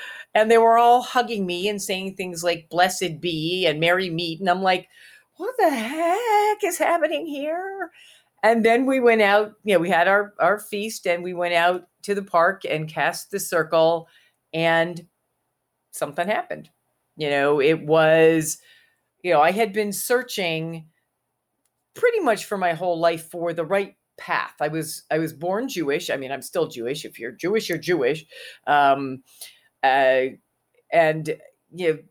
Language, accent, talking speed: English, American, 170 wpm